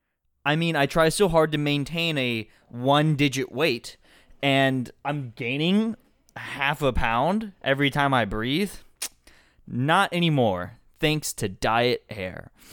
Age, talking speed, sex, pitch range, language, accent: 20-39, 125 wpm, male, 120-160 Hz, English, American